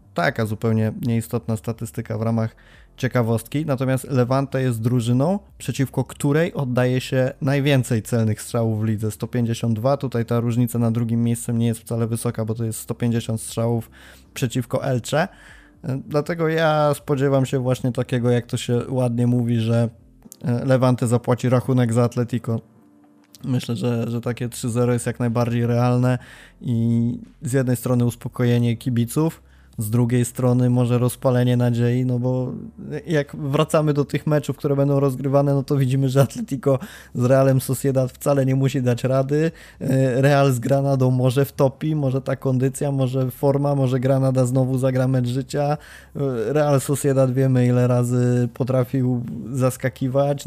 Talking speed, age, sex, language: 145 wpm, 20-39, male, Polish